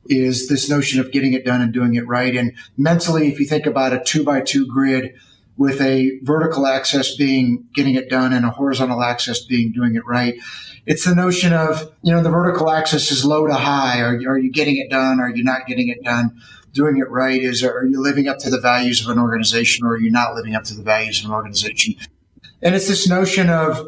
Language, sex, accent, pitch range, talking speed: English, male, American, 130-165 Hz, 235 wpm